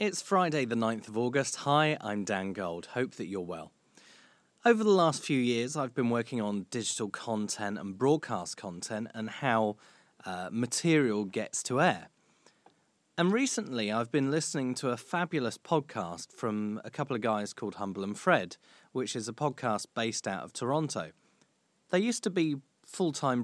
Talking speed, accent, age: 170 wpm, British, 30-49